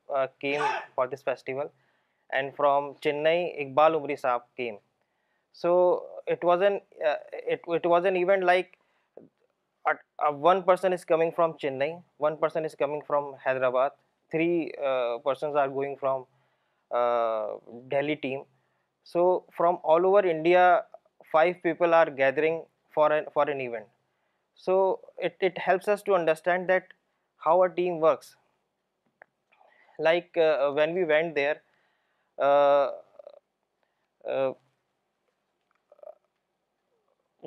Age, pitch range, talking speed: 20-39, 140-175 Hz, 125 wpm